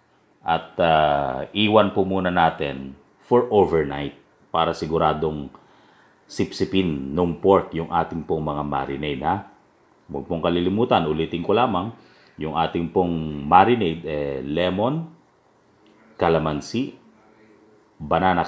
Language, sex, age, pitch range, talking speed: English, male, 40-59, 80-100 Hz, 100 wpm